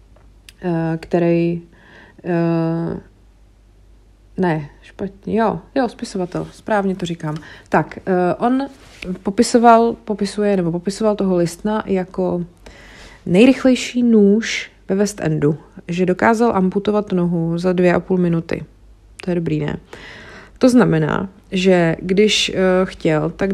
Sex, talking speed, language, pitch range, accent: female, 105 wpm, Czech, 165-200 Hz, native